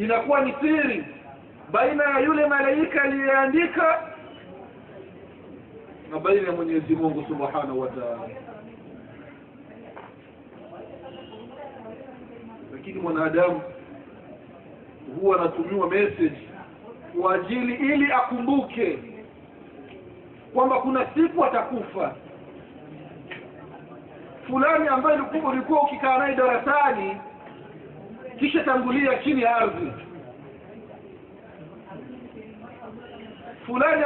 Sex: male